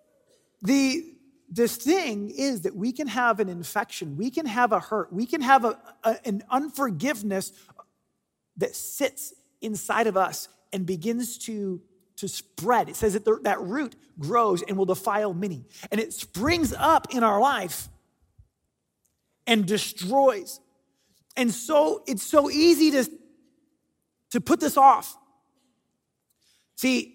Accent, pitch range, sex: American, 195-270 Hz, male